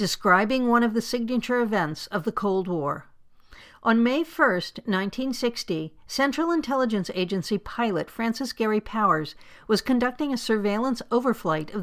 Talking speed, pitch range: 135 wpm, 195-250 Hz